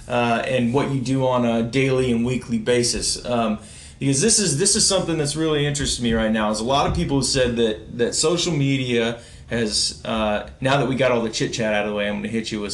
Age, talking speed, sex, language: 20-39, 260 wpm, male, English